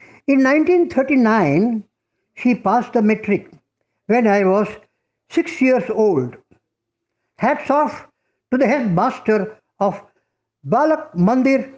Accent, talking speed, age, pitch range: Indian, 100 wpm, 60-79, 190-270 Hz